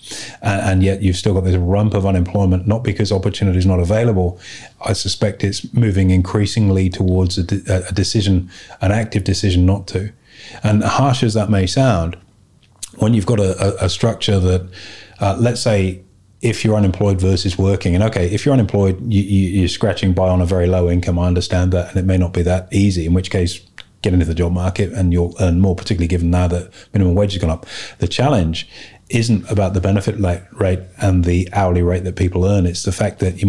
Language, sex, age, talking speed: English, male, 30-49, 200 wpm